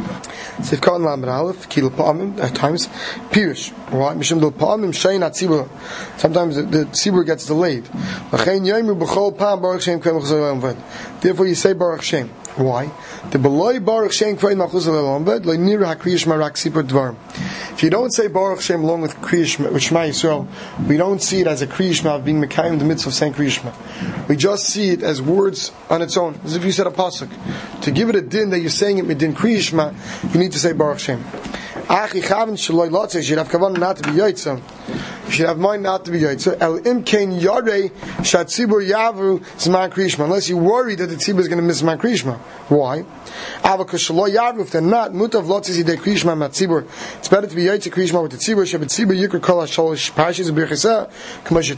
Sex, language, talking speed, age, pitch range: male, English, 105 wpm, 30-49, 155-195 Hz